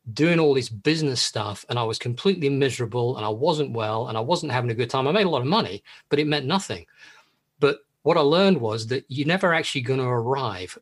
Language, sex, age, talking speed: English, male, 40-59, 240 wpm